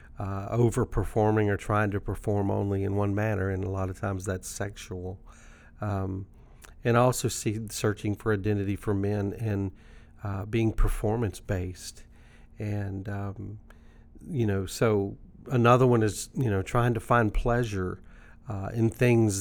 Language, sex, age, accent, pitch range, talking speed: English, male, 40-59, American, 100-115 Hz, 150 wpm